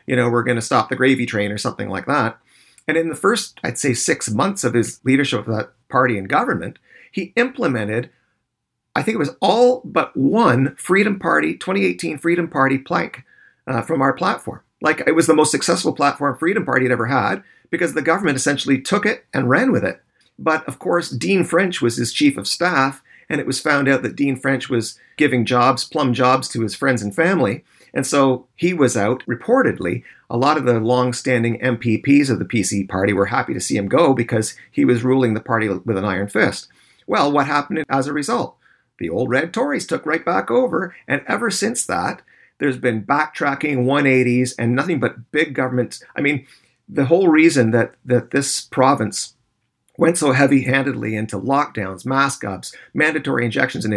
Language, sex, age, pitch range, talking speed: English, male, 40-59, 120-145 Hz, 195 wpm